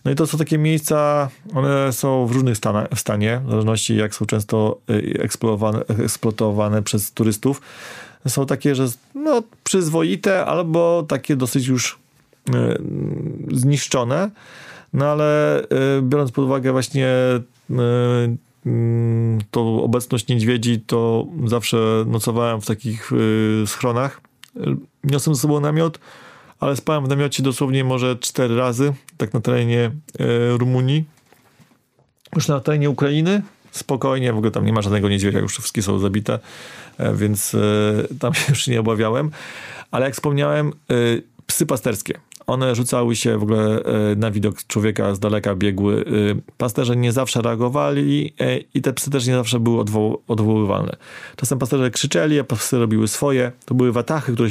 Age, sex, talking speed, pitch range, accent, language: 30-49, male, 135 wpm, 110-140 Hz, native, Polish